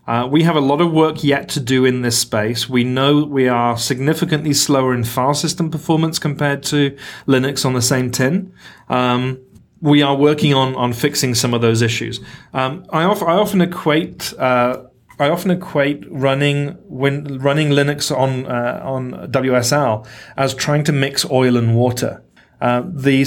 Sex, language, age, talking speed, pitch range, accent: male, English, 30-49, 175 wpm, 120-145 Hz, British